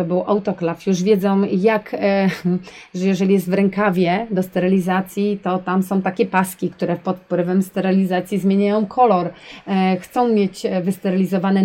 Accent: native